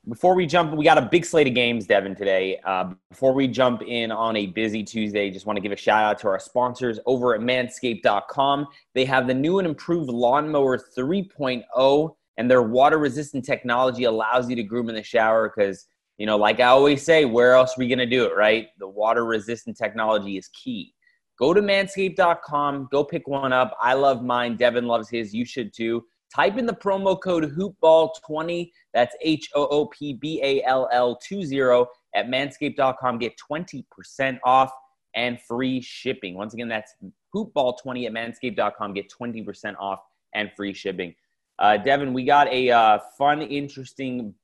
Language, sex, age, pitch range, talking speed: English, male, 30-49, 110-145 Hz, 170 wpm